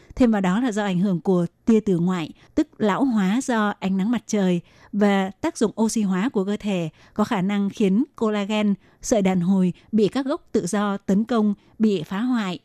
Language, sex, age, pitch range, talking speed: Vietnamese, female, 20-39, 195-230 Hz, 215 wpm